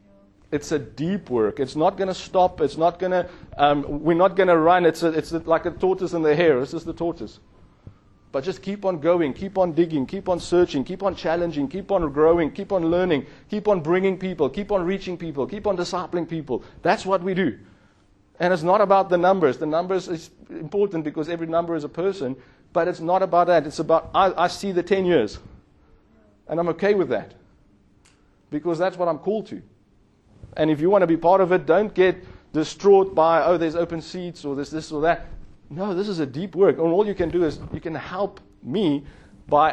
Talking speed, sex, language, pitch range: 220 wpm, male, English, 150-185 Hz